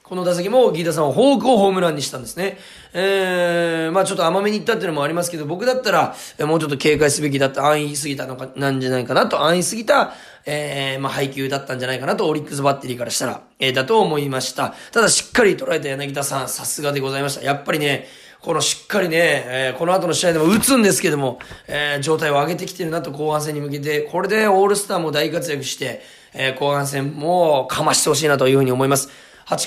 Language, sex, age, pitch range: Japanese, male, 20-39, 145-205 Hz